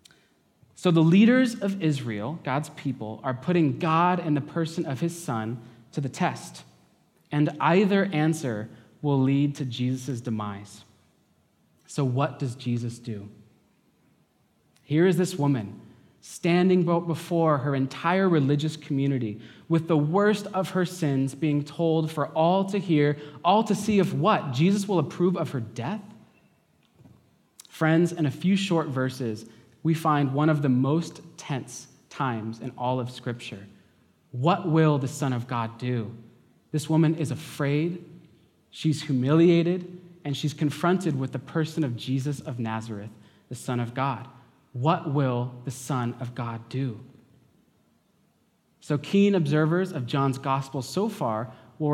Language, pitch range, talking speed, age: English, 125-170 Hz, 145 wpm, 20-39